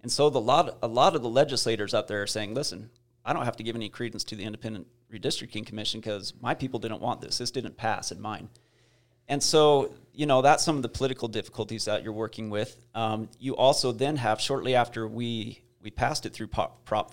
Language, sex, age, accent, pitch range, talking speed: English, male, 30-49, American, 110-125 Hz, 230 wpm